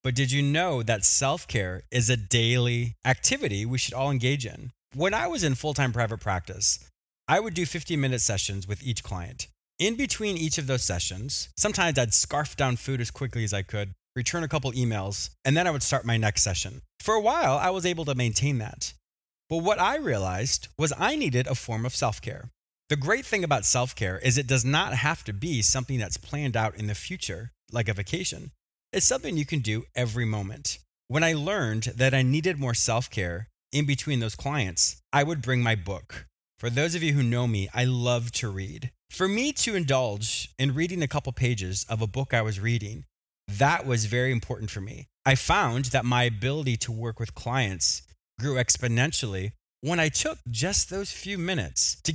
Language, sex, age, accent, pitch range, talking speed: English, male, 30-49, American, 110-145 Hz, 200 wpm